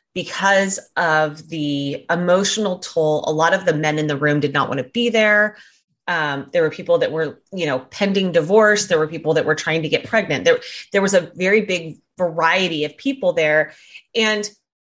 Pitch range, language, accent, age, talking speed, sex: 160-220 Hz, English, American, 30-49, 200 wpm, female